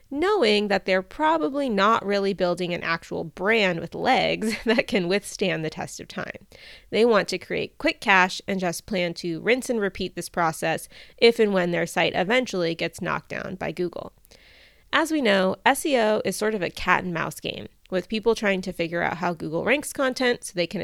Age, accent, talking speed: 20-39, American, 200 wpm